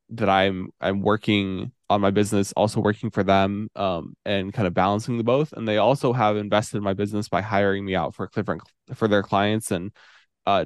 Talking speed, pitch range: 210 wpm, 95-110 Hz